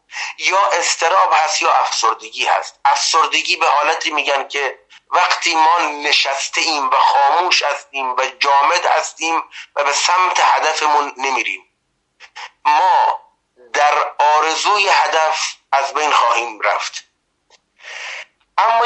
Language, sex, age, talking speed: Persian, male, 30-49, 110 wpm